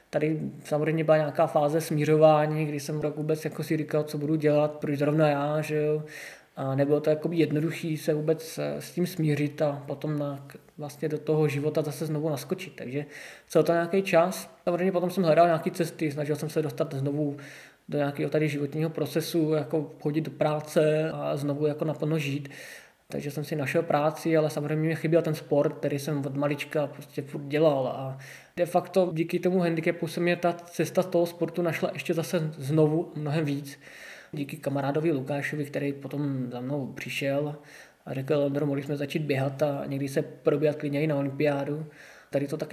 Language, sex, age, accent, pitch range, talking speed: Czech, male, 20-39, native, 145-160 Hz, 185 wpm